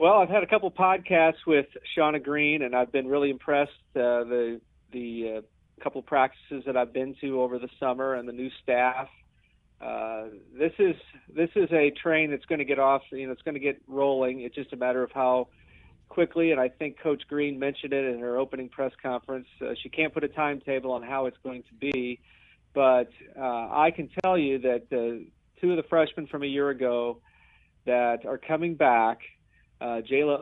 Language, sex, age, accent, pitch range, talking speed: English, male, 40-59, American, 125-150 Hz, 205 wpm